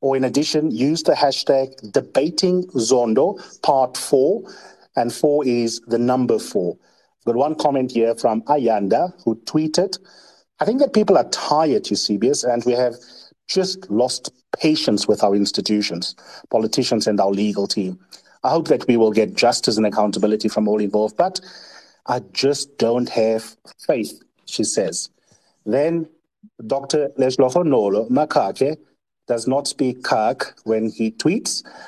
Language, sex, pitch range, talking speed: English, male, 115-150 Hz, 145 wpm